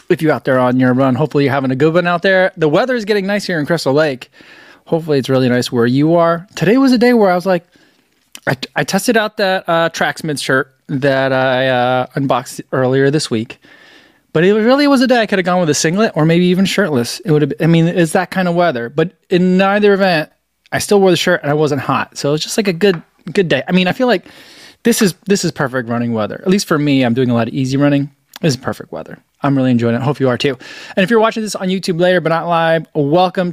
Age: 20-39